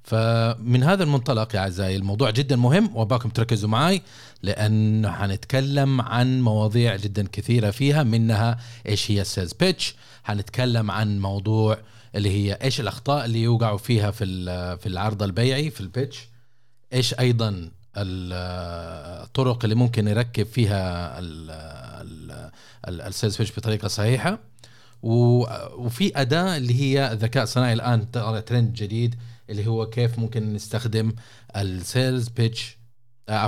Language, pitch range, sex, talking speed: Arabic, 100-125 Hz, male, 120 wpm